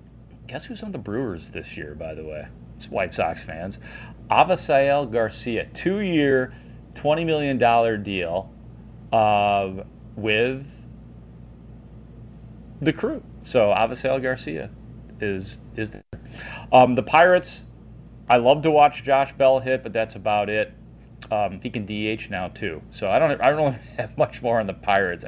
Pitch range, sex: 105-130 Hz, male